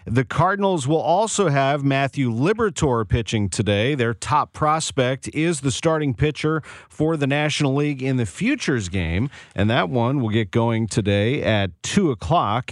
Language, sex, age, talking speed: English, male, 40-59, 160 wpm